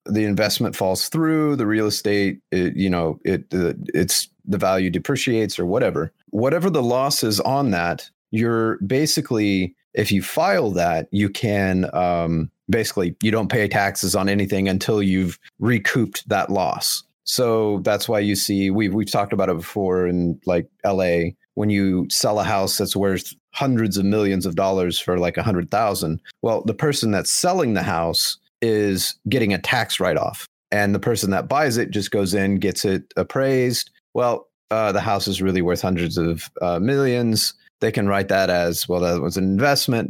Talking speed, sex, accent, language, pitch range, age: 180 wpm, male, American, English, 95-115 Hz, 30-49